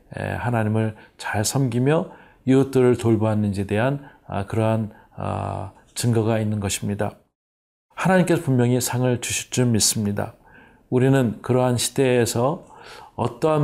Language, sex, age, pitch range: Korean, male, 40-59, 110-135 Hz